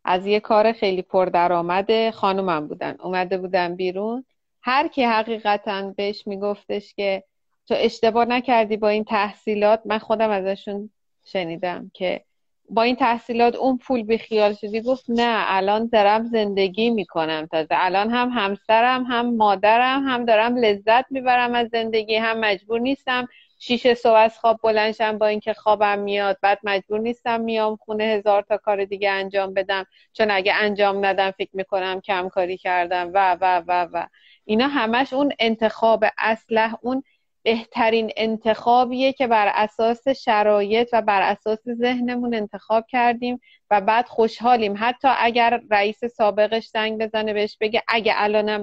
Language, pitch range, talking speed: Persian, 200-235 Hz, 150 wpm